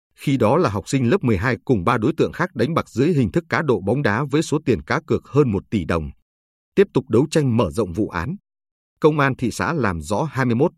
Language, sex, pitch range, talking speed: Vietnamese, male, 100-140 Hz, 250 wpm